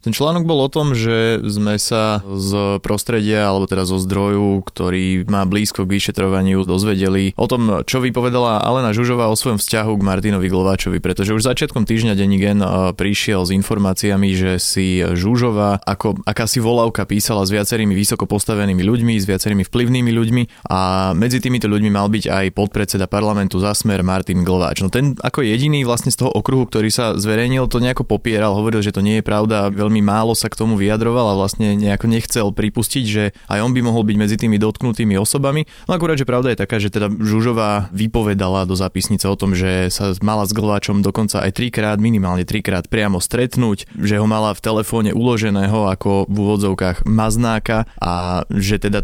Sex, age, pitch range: male, 20-39, 100-115 Hz